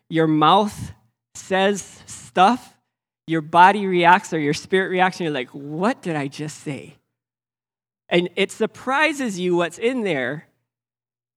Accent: American